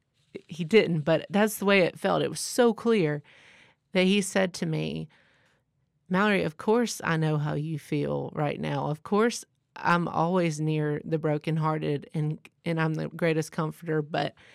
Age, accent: 30-49, American